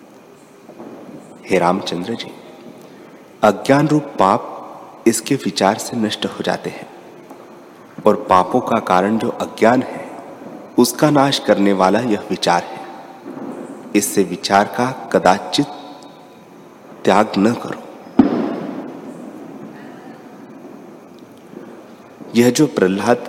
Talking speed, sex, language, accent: 95 wpm, male, Hindi, native